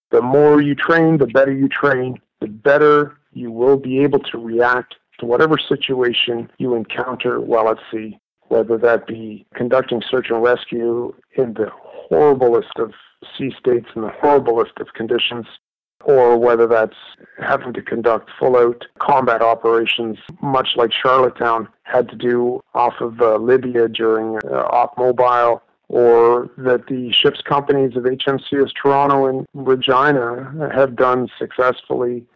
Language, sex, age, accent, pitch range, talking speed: English, male, 50-69, American, 115-140 Hz, 145 wpm